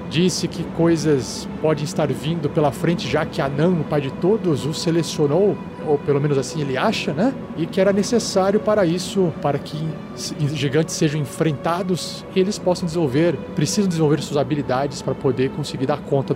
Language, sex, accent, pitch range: Portuguese, male, Brazilian, 155-195 Hz